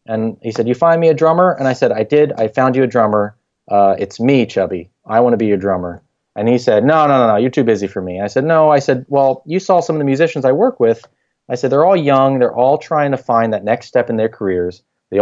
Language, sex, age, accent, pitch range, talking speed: English, male, 30-49, American, 105-135 Hz, 285 wpm